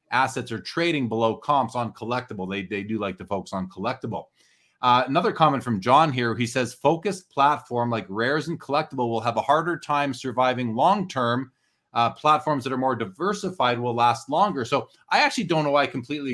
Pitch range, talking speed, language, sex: 120-155 Hz, 195 wpm, English, male